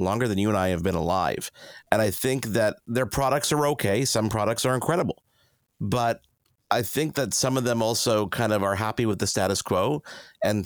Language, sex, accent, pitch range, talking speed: English, male, American, 105-130 Hz, 210 wpm